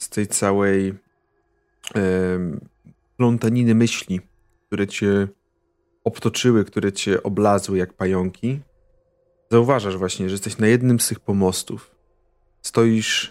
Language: Polish